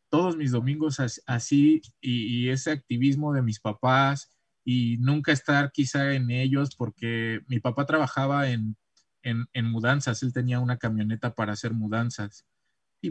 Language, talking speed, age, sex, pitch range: Spanish, 150 wpm, 20-39, male, 115-140 Hz